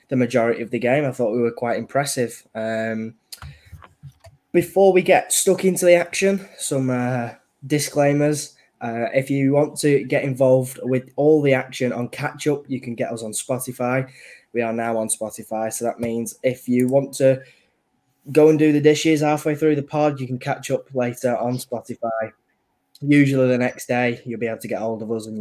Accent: British